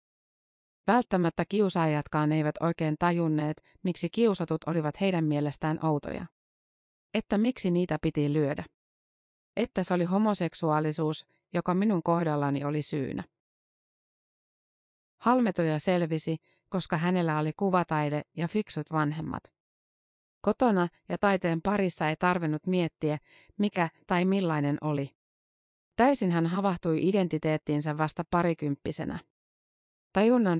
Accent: native